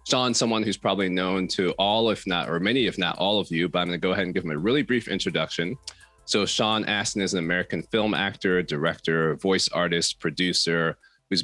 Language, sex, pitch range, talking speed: English, male, 80-100 Hz, 220 wpm